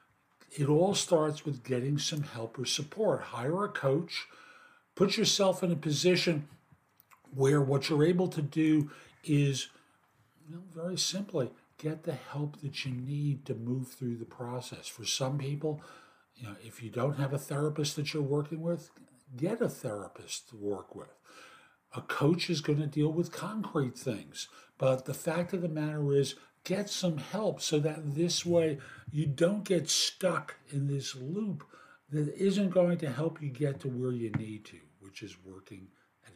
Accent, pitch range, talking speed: American, 130-170 Hz, 170 wpm